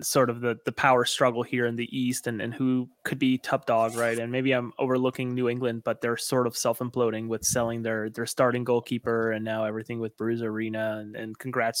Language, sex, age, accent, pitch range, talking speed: English, male, 20-39, American, 115-135 Hz, 225 wpm